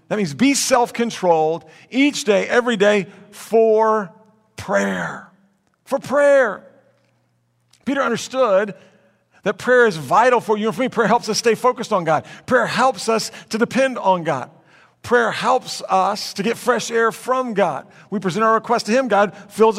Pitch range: 155-230 Hz